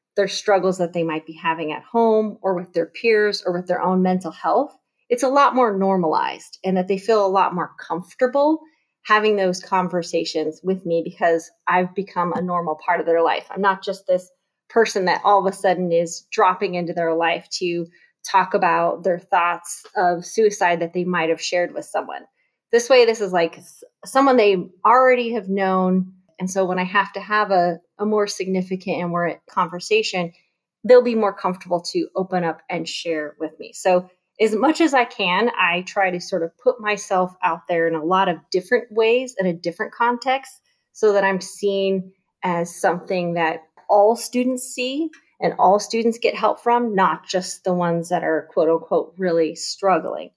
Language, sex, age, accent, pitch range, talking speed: English, female, 30-49, American, 175-210 Hz, 190 wpm